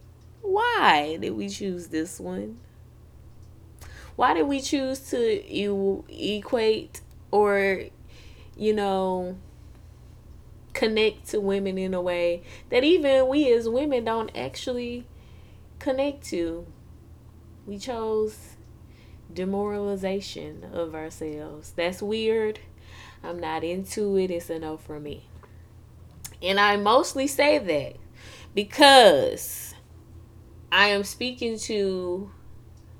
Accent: American